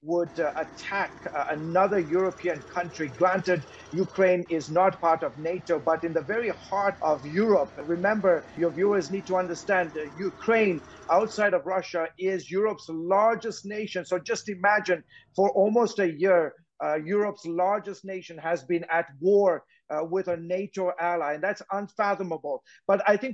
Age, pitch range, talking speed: 50-69, 170-200 Hz, 160 wpm